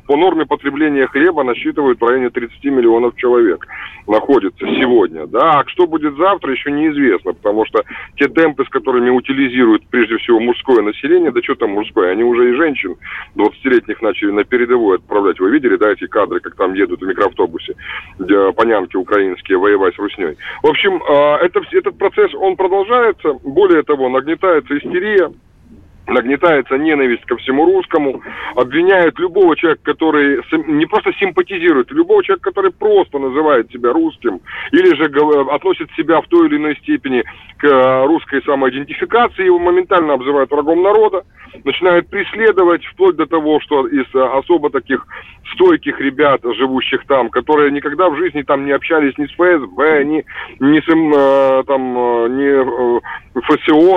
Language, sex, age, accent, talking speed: Russian, male, 30-49, native, 145 wpm